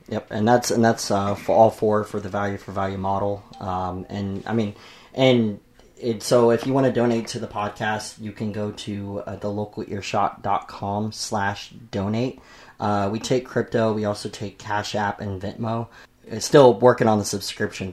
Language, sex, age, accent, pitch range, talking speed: English, male, 30-49, American, 100-115 Hz, 185 wpm